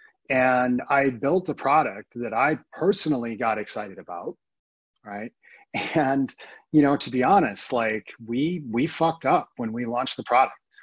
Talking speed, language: 155 wpm, English